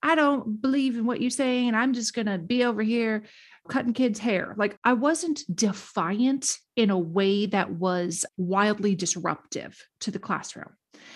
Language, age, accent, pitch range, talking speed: English, 30-49, American, 215-310 Hz, 165 wpm